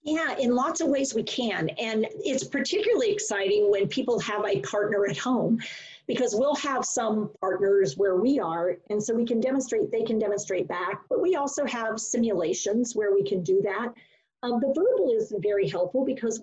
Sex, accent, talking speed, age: female, American, 190 wpm, 40-59